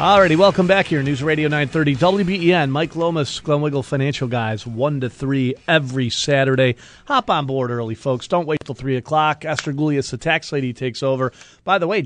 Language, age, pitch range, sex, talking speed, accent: English, 40-59, 120-150 Hz, male, 190 wpm, American